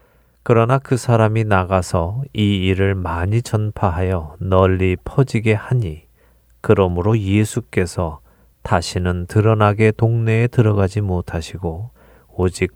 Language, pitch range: Korean, 90-110 Hz